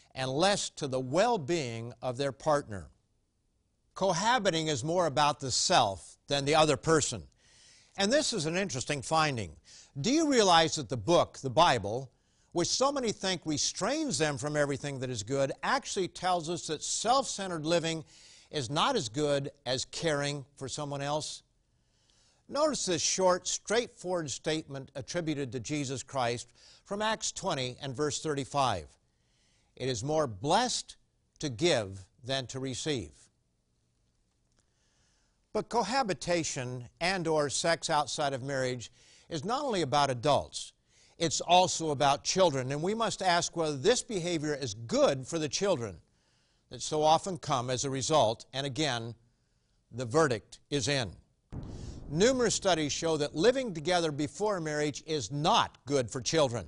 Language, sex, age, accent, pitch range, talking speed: English, male, 60-79, American, 130-175 Hz, 145 wpm